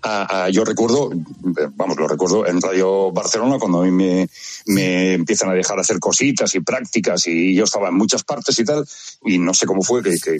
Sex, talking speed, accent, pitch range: male, 215 wpm, Spanish, 95-140 Hz